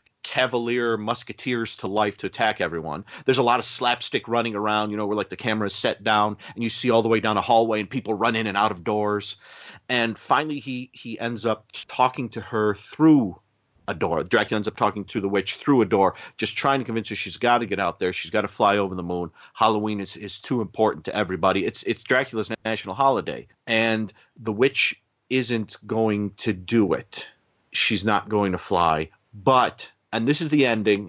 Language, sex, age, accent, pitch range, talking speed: English, male, 40-59, American, 100-120 Hz, 215 wpm